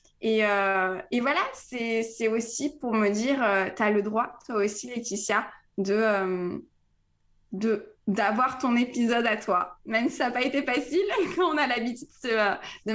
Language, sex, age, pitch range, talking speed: French, female, 20-39, 210-250 Hz, 175 wpm